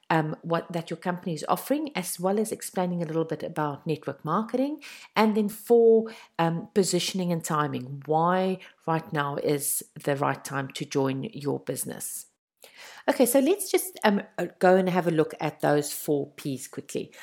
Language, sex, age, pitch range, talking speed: English, female, 50-69, 160-235 Hz, 175 wpm